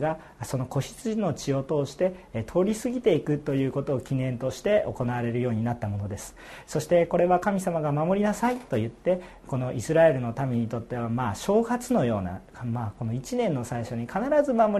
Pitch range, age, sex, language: 125-185 Hz, 40-59, male, Japanese